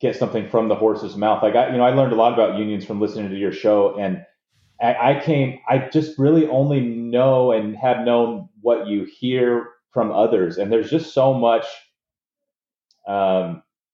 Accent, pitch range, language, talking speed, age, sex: American, 105-140 Hz, English, 195 wpm, 30-49, male